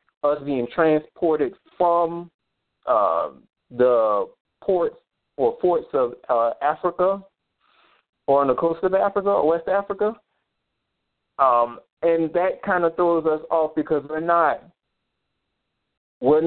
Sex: male